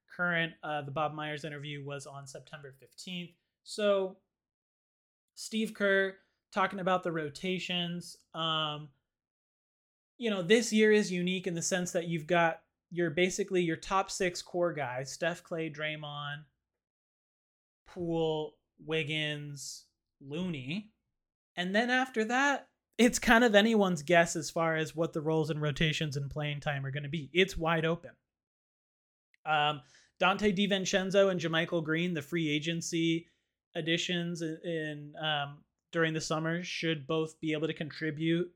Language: English